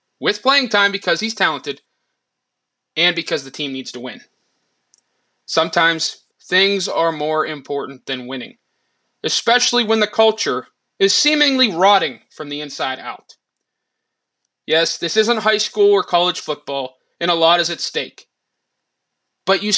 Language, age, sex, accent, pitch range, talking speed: English, 20-39, male, American, 150-220 Hz, 145 wpm